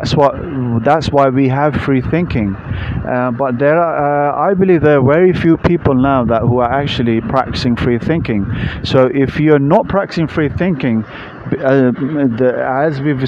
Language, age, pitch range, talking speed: English, 30-49, 115-140 Hz, 180 wpm